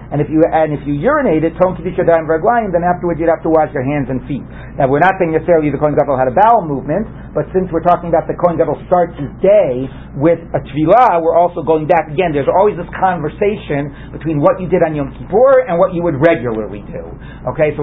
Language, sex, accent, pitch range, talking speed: English, male, American, 145-195 Hz, 225 wpm